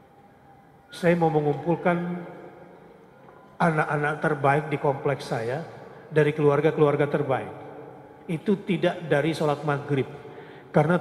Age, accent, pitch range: 40-59, native, 145-170 Hz